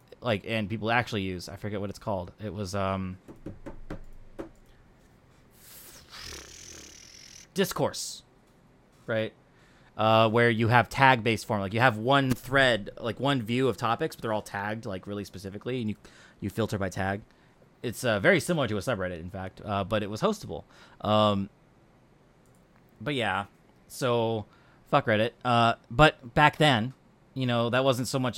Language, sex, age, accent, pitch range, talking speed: English, male, 20-39, American, 105-140 Hz, 160 wpm